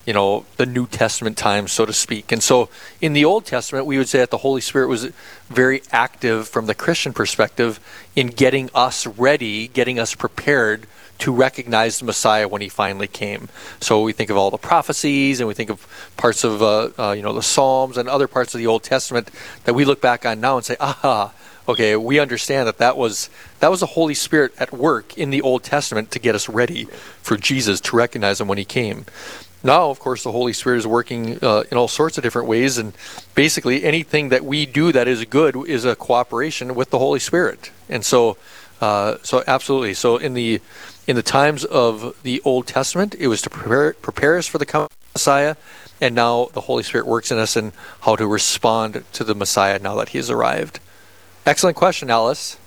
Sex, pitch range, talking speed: male, 110-135 Hz, 215 wpm